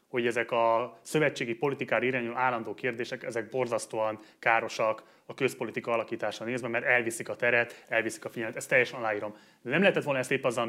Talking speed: 180 wpm